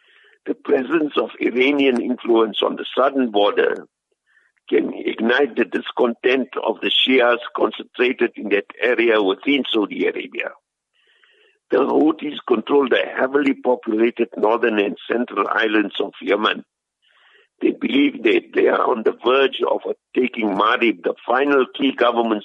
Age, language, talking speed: 60-79, English, 135 wpm